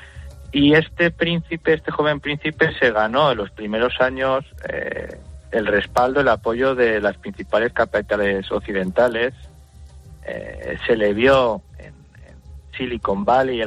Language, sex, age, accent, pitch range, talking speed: Spanish, male, 30-49, Spanish, 105-135 Hz, 130 wpm